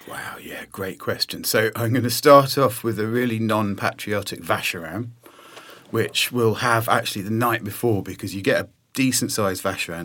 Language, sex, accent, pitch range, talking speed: English, male, British, 95-120 Hz, 165 wpm